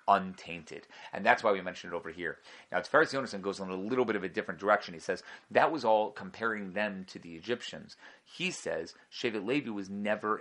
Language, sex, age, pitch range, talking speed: English, male, 30-49, 100-125 Hz, 220 wpm